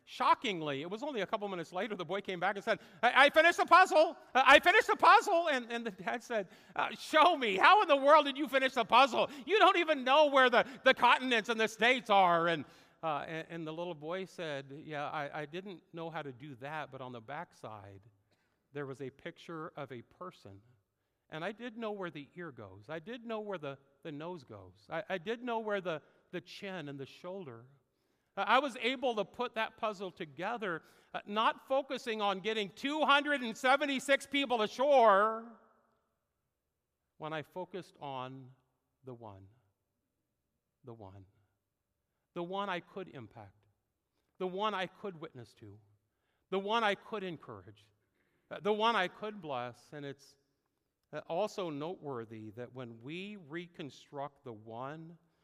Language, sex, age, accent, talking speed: English, male, 50-69, American, 175 wpm